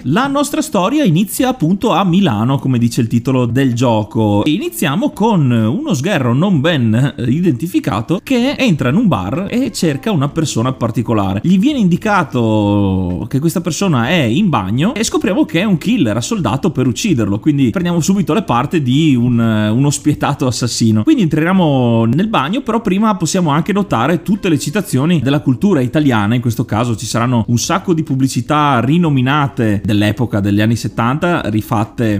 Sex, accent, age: male, native, 30-49